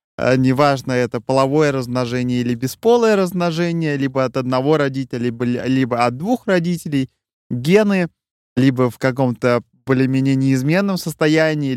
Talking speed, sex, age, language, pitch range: 115 wpm, male, 20-39, Russian, 120-145 Hz